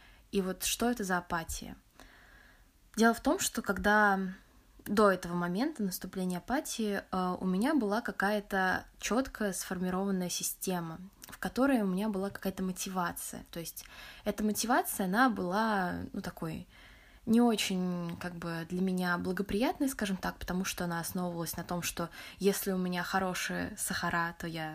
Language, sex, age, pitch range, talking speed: Russian, female, 20-39, 180-230 Hz, 150 wpm